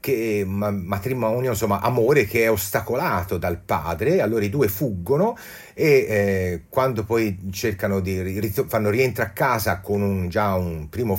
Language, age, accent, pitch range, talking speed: Italian, 40-59, native, 95-120 Hz, 155 wpm